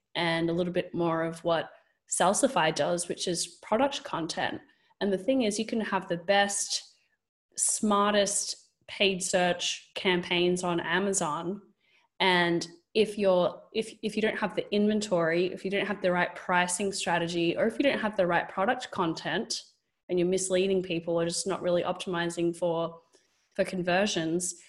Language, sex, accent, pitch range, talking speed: English, female, Australian, 170-200 Hz, 165 wpm